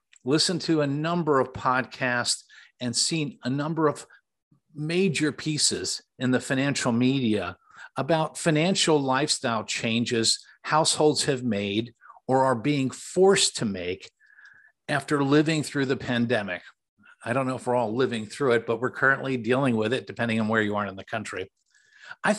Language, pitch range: English, 120-155 Hz